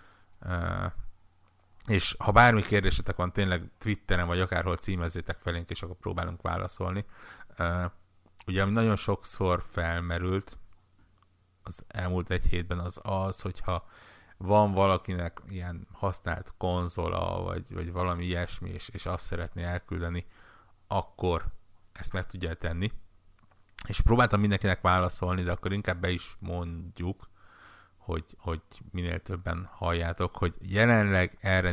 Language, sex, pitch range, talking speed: Hungarian, male, 85-95 Hz, 120 wpm